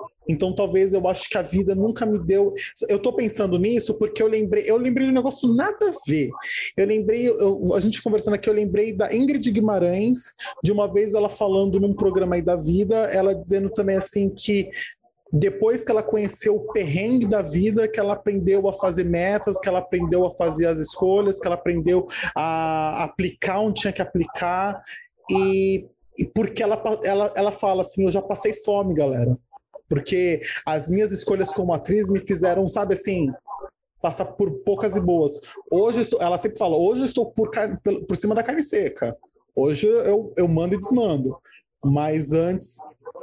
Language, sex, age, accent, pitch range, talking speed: Portuguese, male, 20-39, Brazilian, 175-220 Hz, 185 wpm